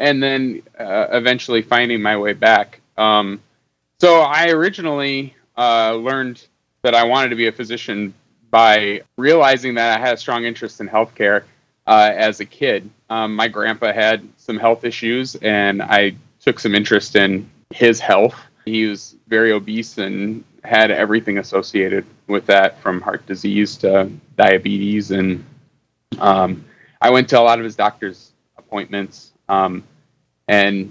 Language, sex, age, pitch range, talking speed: English, male, 30-49, 100-120 Hz, 150 wpm